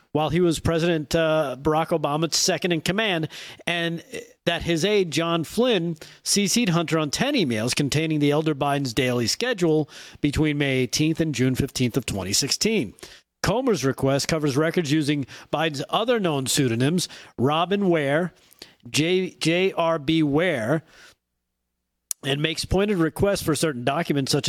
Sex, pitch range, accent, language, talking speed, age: male, 140-170 Hz, American, English, 135 wpm, 40-59